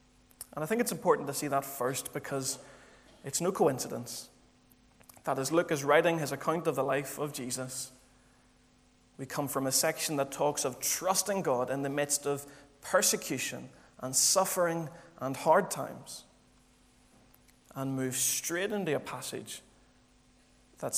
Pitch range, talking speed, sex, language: 125-155 Hz, 150 wpm, male, English